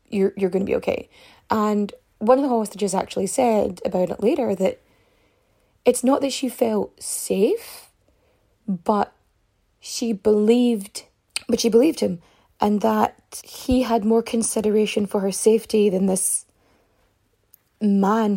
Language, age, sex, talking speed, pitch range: English, 20-39, female, 135 wpm, 195-240 Hz